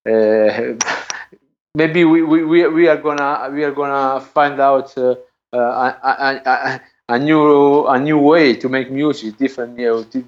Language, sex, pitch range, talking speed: English, male, 115-150 Hz, 175 wpm